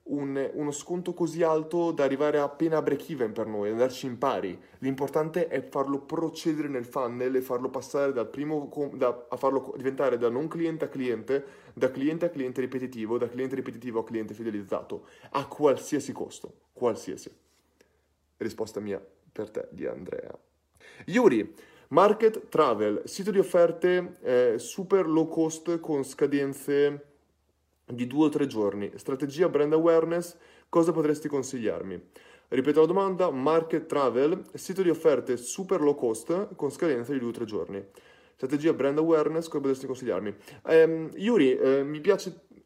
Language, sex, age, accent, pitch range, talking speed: Italian, male, 20-39, native, 130-170 Hz, 150 wpm